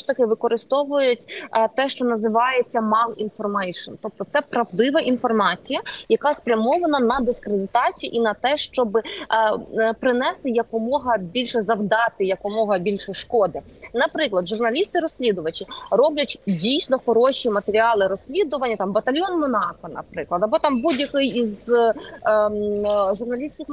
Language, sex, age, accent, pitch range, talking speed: Ukrainian, female, 20-39, native, 215-265 Hz, 105 wpm